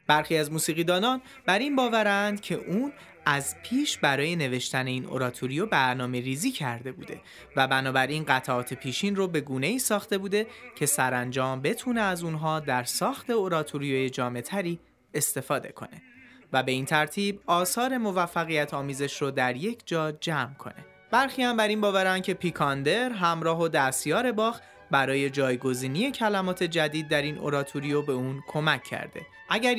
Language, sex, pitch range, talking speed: Persian, male, 135-200 Hz, 150 wpm